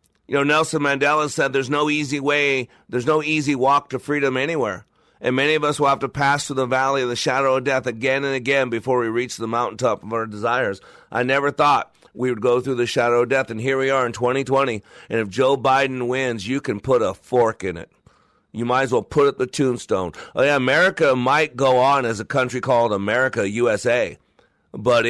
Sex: male